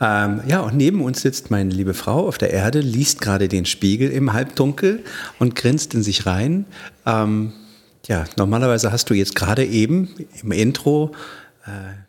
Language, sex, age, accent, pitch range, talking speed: German, male, 50-69, German, 110-140 Hz, 170 wpm